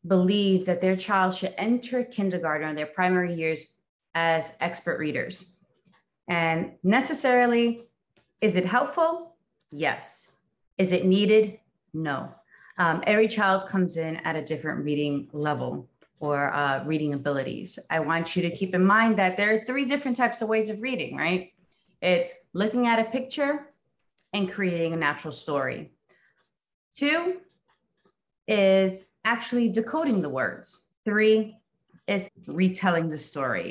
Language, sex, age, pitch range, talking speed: English, female, 30-49, 170-220 Hz, 135 wpm